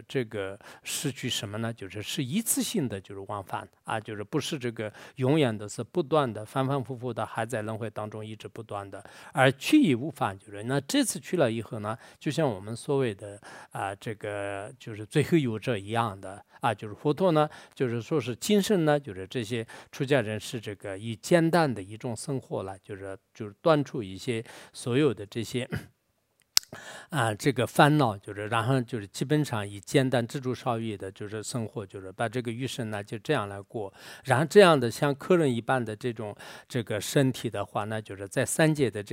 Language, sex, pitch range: English, male, 105-140 Hz